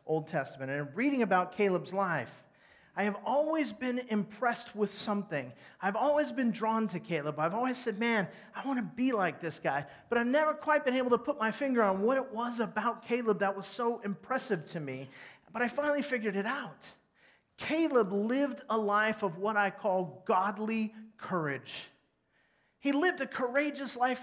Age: 30-49